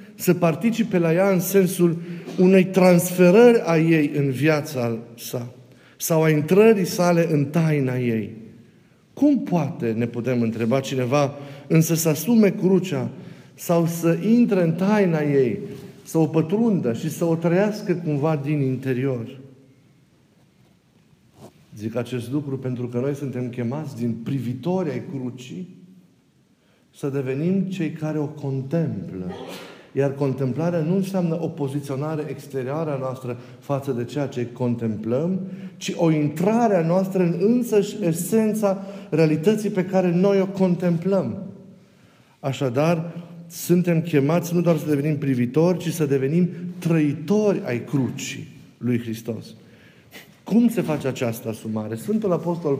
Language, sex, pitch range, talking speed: Romanian, male, 135-180 Hz, 130 wpm